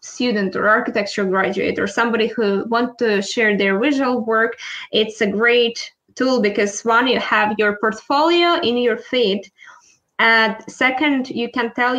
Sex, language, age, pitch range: female, English, 20-39, 215-260 Hz